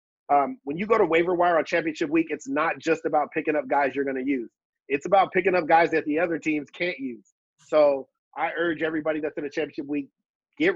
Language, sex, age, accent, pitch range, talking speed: English, male, 30-49, American, 140-170 Hz, 235 wpm